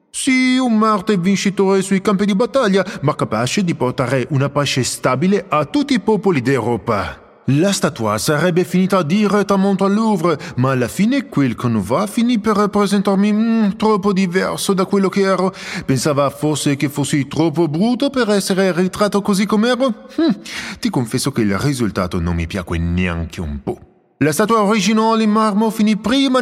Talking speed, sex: 165 wpm, male